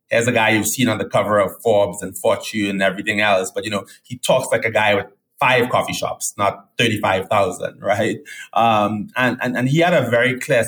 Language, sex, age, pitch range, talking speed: English, male, 20-39, 105-130 Hz, 220 wpm